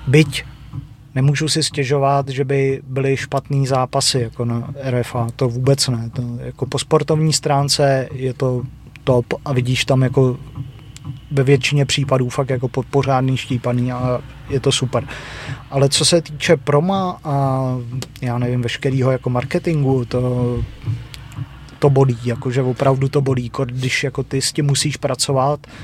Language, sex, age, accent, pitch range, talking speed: Czech, male, 30-49, native, 130-140 Hz, 145 wpm